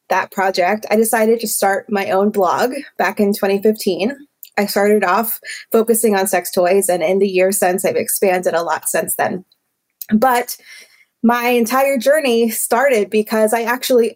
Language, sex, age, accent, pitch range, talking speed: English, female, 20-39, American, 195-235 Hz, 160 wpm